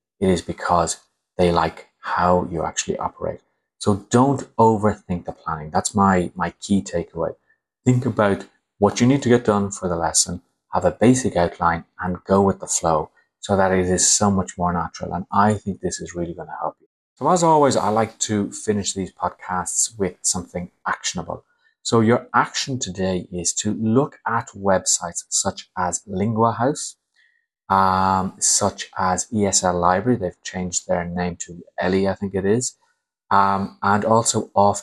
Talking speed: 170 wpm